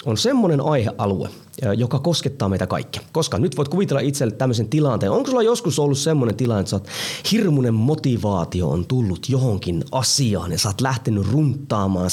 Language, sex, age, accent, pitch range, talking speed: Finnish, male, 30-49, native, 105-160 Hz, 160 wpm